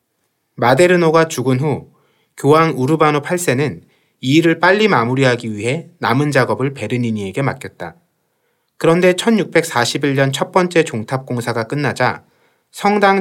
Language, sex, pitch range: Korean, male, 120-165 Hz